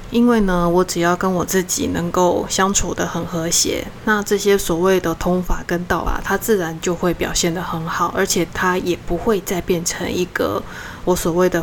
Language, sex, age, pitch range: Chinese, female, 20-39, 170-190 Hz